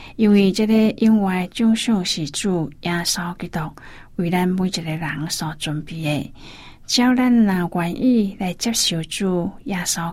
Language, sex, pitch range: Chinese, female, 165-195 Hz